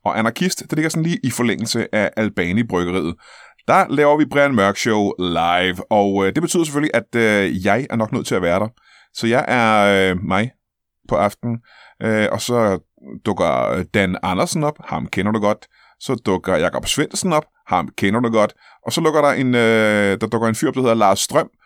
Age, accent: 30-49, native